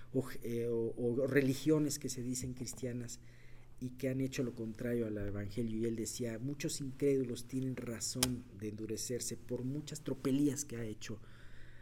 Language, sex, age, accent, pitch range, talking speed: Spanish, male, 40-59, Mexican, 115-155 Hz, 160 wpm